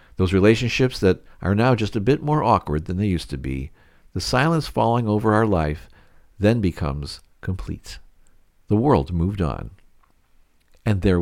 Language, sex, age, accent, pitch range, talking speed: English, male, 50-69, American, 80-115 Hz, 160 wpm